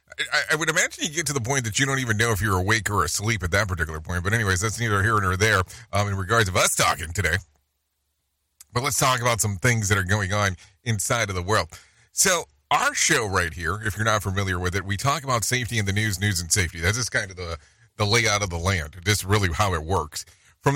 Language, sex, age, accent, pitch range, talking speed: English, male, 30-49, American, 90-120 Hz, 250 wpm